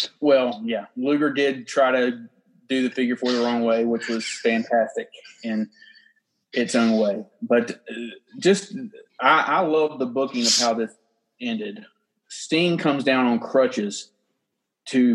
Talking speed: 145 wpm